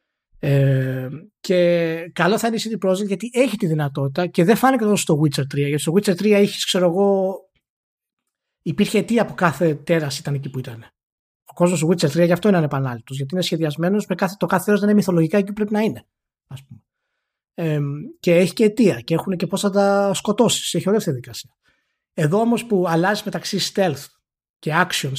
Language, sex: Greek, male